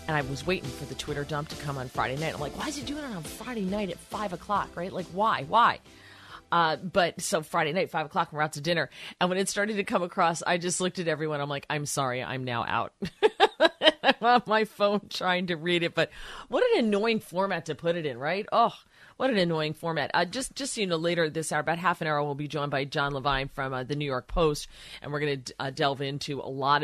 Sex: female